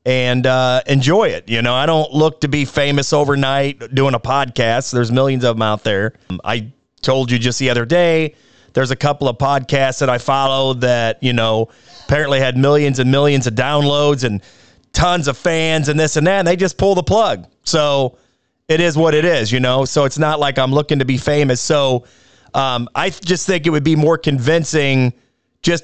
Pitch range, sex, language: 125-150 Hz, male, English